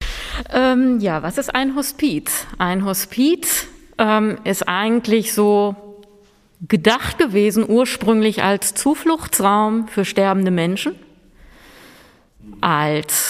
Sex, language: female, German